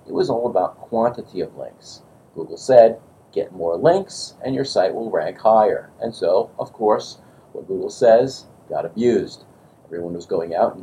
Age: 50-69